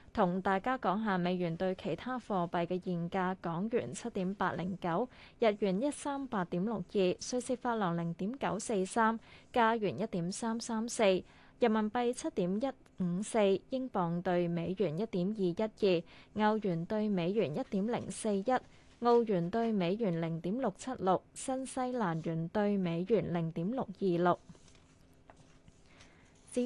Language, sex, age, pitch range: Chinese, female, 20-39, 180-230 Hz